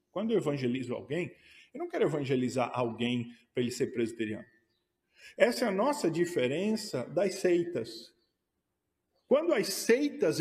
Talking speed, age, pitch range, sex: 135 wpm, 50-69, 150-220 Hz, male